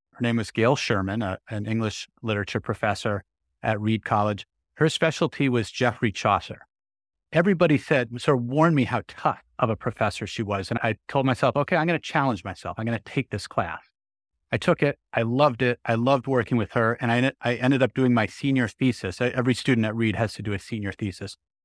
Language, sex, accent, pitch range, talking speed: English, male, American, 110-140 Hz, 210 wpm